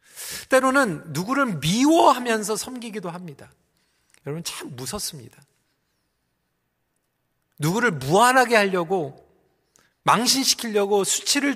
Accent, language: native, Korean